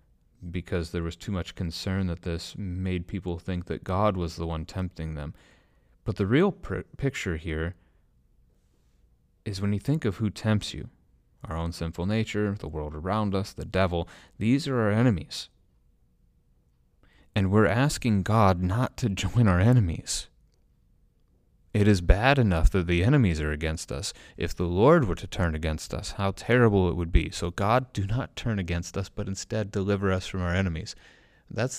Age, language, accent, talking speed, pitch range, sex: 30-49, English, American, 175 wpm, 80-105 Hz, male